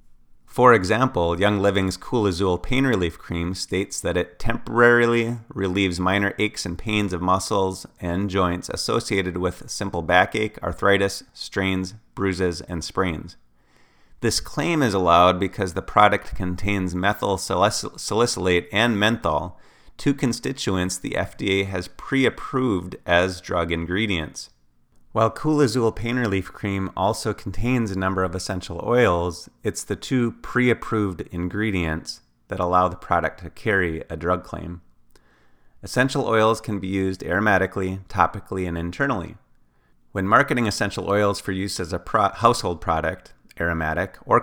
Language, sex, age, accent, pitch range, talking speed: English, male, 30-49, American, 85-105 Hz, 135 wpm